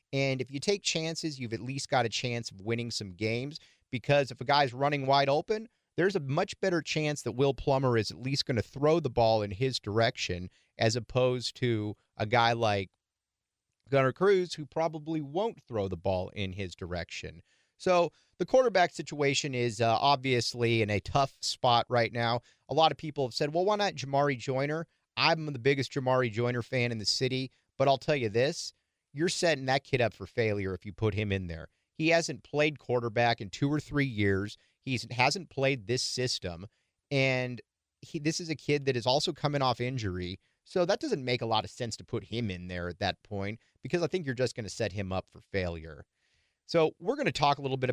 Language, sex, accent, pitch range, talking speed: English, male, American, 110-145 Hz, 215 wpm